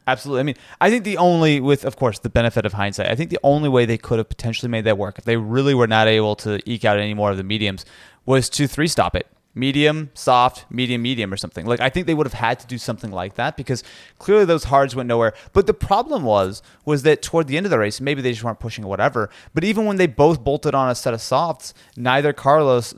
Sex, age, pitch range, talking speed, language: male, 30-49, 110-145 Hz, 265 wpm, English